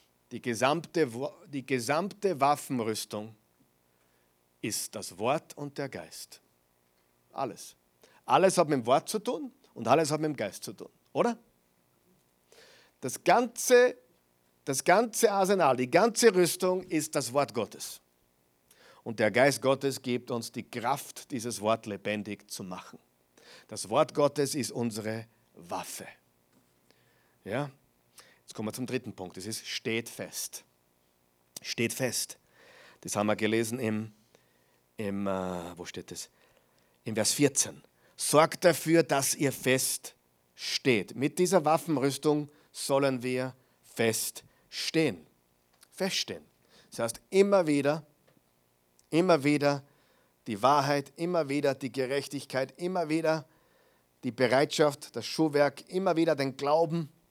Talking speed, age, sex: 125 wpm, 50-69, male